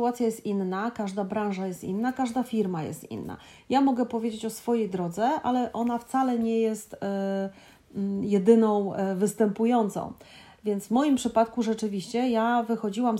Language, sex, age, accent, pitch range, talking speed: Polish, female, 30-49, native, 195-235 Hz, 140 wpm